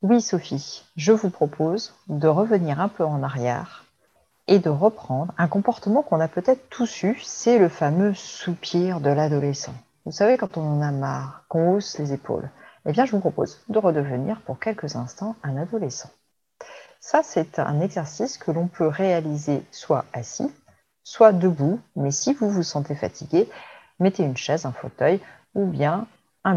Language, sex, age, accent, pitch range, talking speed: French, female, 40-59, French, 150-205 Hz, 170 wpm